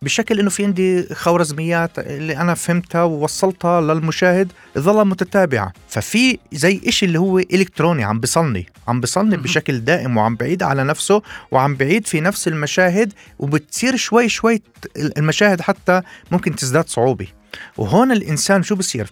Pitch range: 130-185 Hz